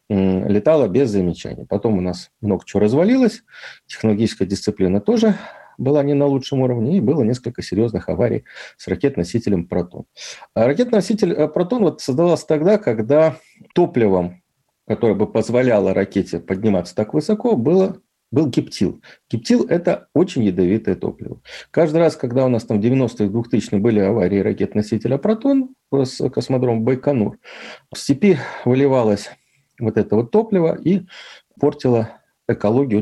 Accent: native